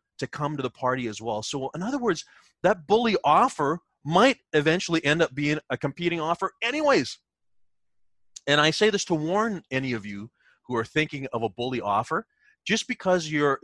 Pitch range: 105-155 Hz